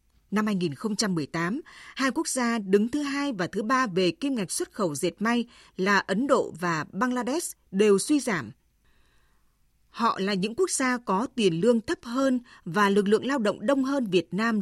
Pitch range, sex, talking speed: 185-250 Hz, female, 185 wpm